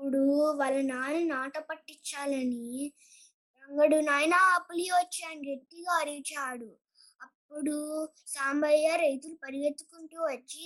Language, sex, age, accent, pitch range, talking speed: Telugu, female, 20-39, native, 270-335 Hz, 85 wpm